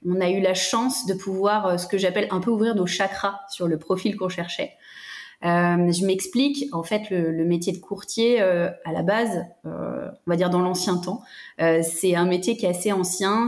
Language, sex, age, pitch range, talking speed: French, female, 20-39, 180-225 Hz, 220 wpm